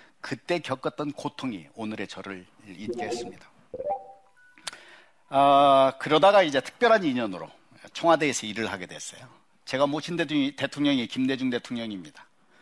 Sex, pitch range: male, 110-155 Hz